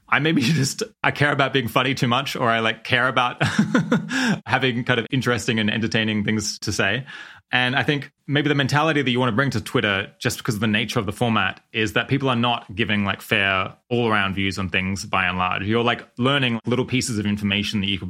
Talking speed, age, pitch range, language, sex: 235 wpm, 20-39, 110-140 Hz, English, male